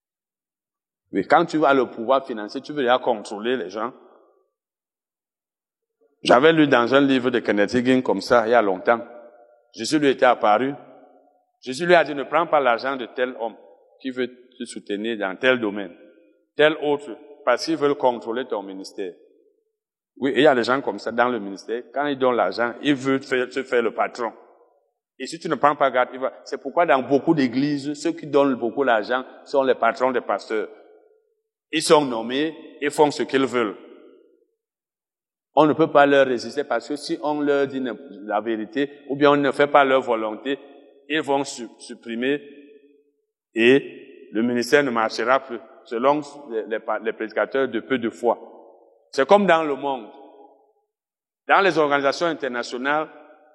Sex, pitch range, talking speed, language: male, 125-155 Hz, 180 wpm, French